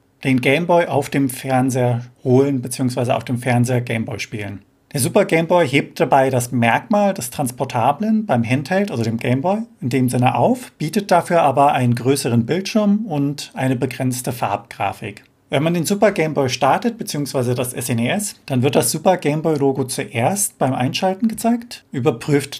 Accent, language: German, German